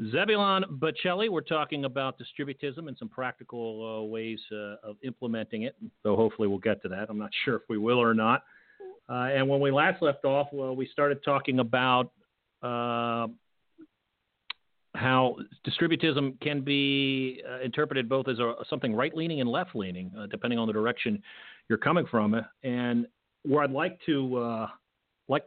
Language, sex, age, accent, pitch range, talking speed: English, male, 50-69, American, 115-150 Hz, 165 wpm